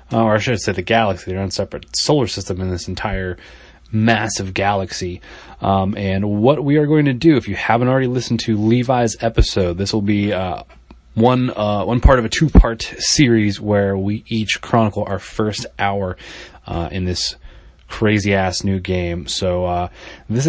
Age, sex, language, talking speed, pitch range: 20-39, male, English, 185 wpm, 90-110 Hz